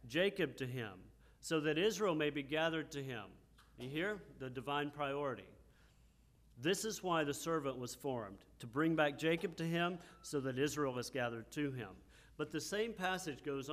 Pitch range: 120-155 Hz